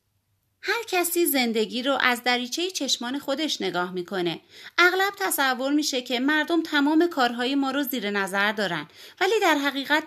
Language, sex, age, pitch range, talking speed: Persian, female, 30-49, 205-300 Hz, 150 wpm